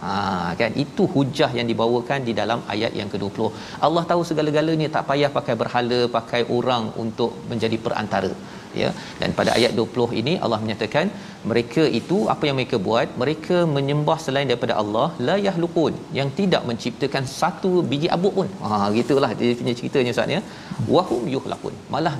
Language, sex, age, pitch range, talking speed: Malayalam, male, 40-59, 115-155 Hz, 165 wpm